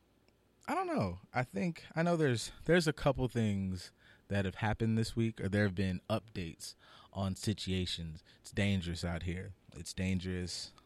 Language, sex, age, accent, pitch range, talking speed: English, male, 20-39, American, 95-115 Hz, 165 wpm